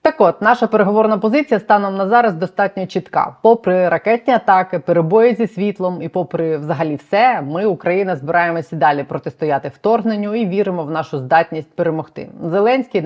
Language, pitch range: Ukrainian, 155-200 Hz